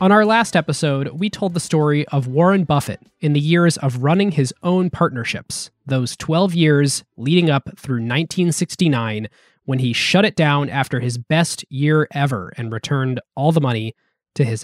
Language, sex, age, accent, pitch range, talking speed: English, male, 20-39, American, 130-170 Hz, 175 wpm